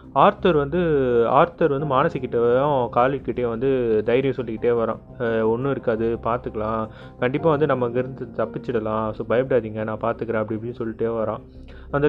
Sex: male